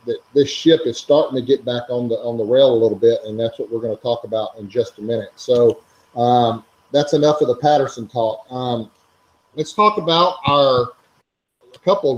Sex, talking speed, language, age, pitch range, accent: male, 205 wpm, English, 40-59, 120-145 Hz, American